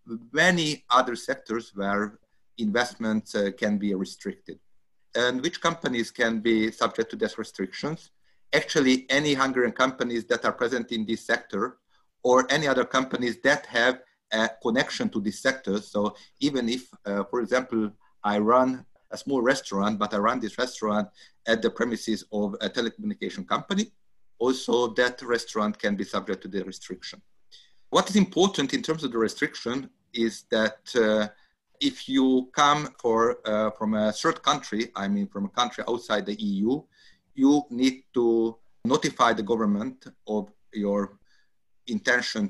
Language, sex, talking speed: Hungarian, male, 150 wpm